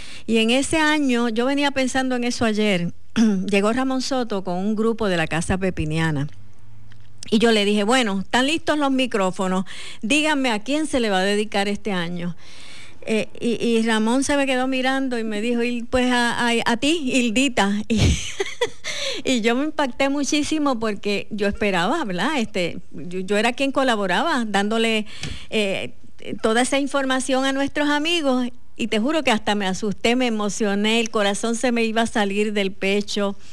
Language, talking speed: Spanish, 175 wpm